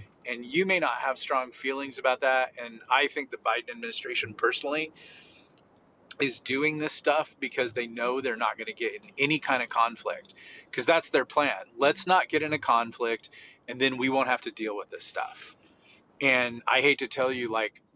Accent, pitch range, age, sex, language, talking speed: American, 115-145 Hz, 30-49, male, English, 200 wpm